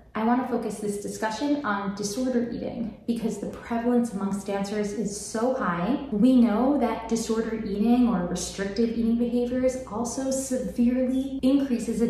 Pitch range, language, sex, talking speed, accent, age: 200-245 Hz, English, female, 145 wpm, American, 20-39